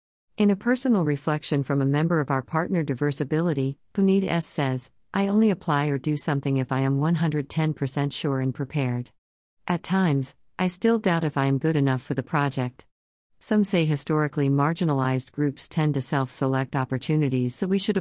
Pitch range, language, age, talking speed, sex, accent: 130-165 Hz, English, 50-69, 175 wpm, female, American